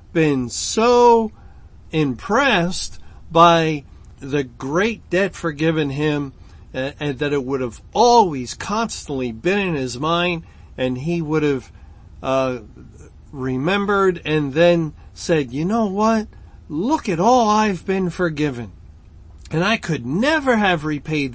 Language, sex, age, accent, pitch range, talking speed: English, male, 50-69, American, 130-180 Hz, 125 wpm